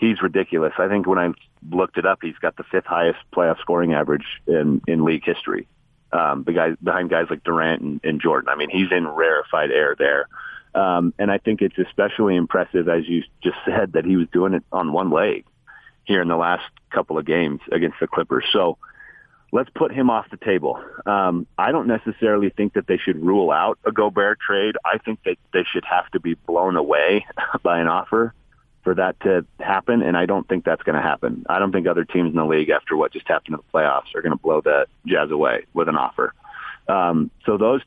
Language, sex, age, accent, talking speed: English, male, 40-59, American, 220 wpm